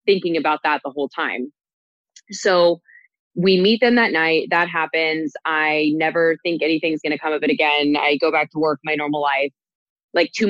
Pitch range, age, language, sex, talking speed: 150-175 Hz, 20-39, English, female, 195 wpm